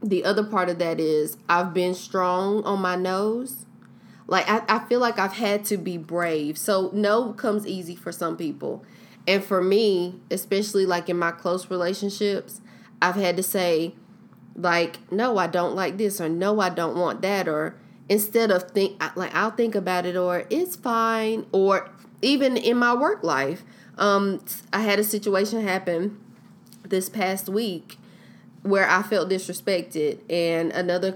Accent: American